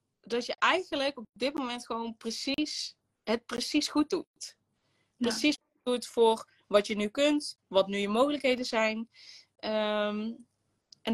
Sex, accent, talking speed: female, Dutch, 140 wpm